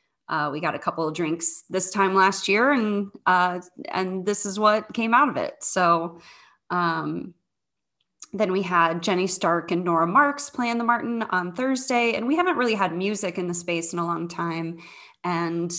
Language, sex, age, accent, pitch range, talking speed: English, female, 20-39, American, 185-235 Hz, 190 wpm